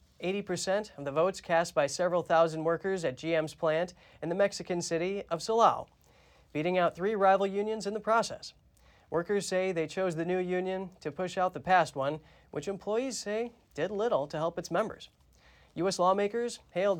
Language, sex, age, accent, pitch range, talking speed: English, male, 30-49, American, 155-195 Hz, 175 wpm